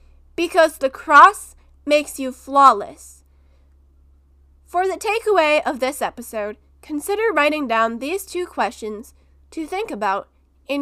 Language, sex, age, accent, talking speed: English, female, 10-29, American, 120 wpm